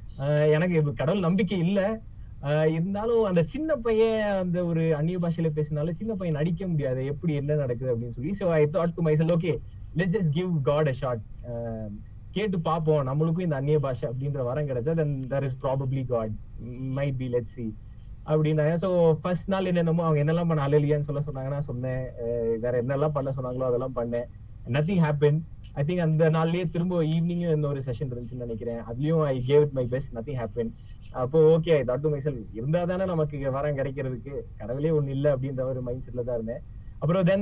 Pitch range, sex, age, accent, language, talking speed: 125-165 Hz, male, 20-39, Indian, English, 105 wpm